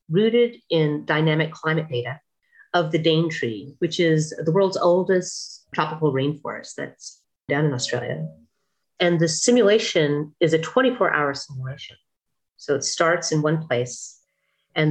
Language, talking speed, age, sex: English, 140 wpm, 40-59, female